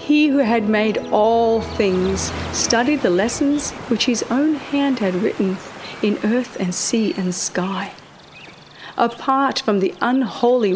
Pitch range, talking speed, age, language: 190-245 Hz, 140 wpm, 40-59, English